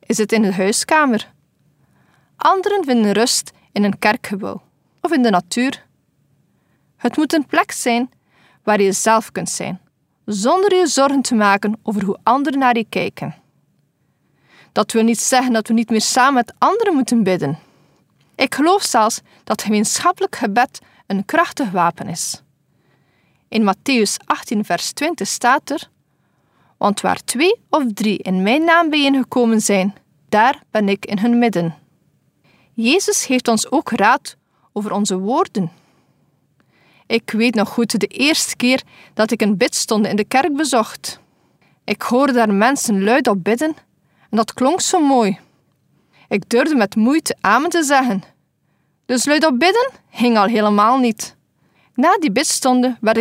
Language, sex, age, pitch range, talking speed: Dutch, female, 40-59, 210-270 Hz, 155 wpm